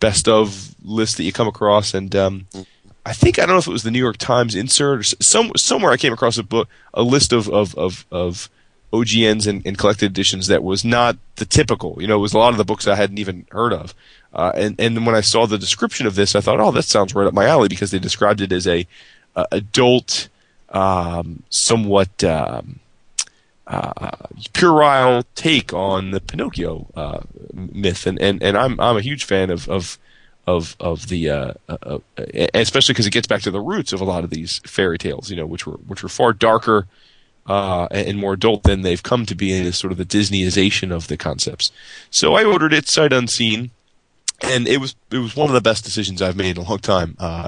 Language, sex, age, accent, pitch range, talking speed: English, male, 30-49, American, 95-115 Hz, 225 wpm